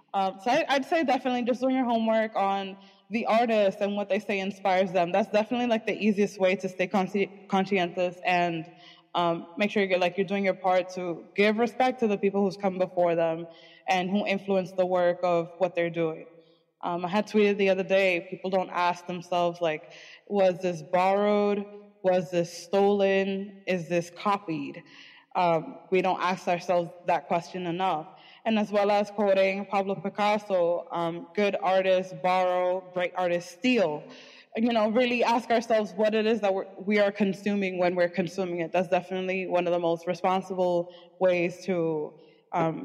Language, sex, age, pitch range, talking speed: English, female, 20-39, 175-205 Hz, 175 wpm